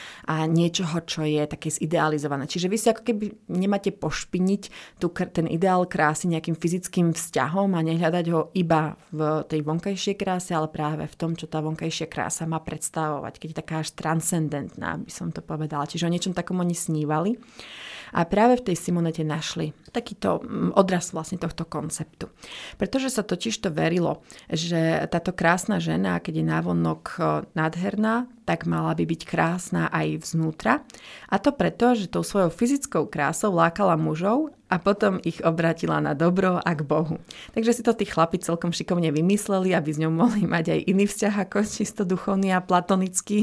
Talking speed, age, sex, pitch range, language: 170 wpm, 30-49, female, 160-190 Hz, Slovak